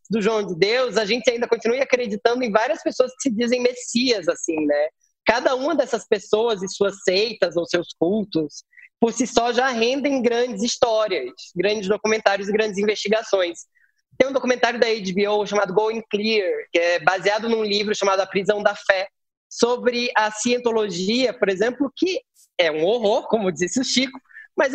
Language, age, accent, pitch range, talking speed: Portuguese, 20-39, Brazilian, 195-250 Hz, 175 wpm